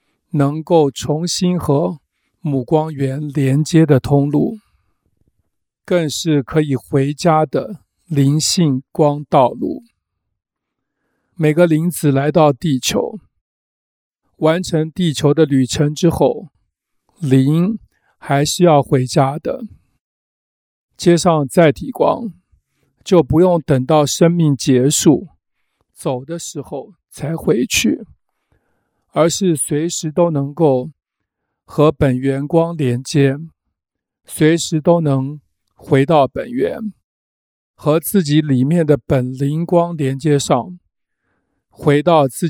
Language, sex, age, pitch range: Chinese, male, 50-69, 135-170 Hz